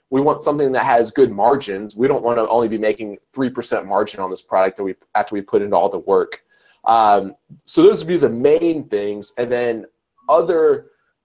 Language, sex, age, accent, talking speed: English, male, 20-39, American, 215 wpm